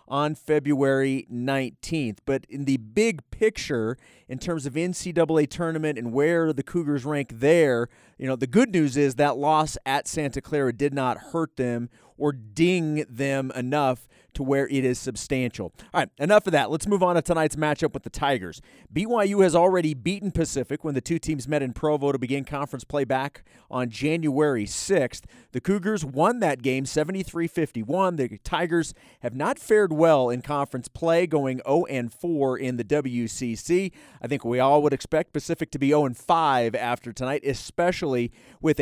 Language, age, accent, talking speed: English, 30-49, American, 170 wpm